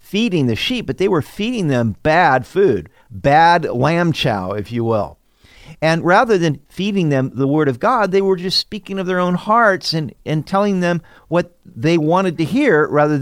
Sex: male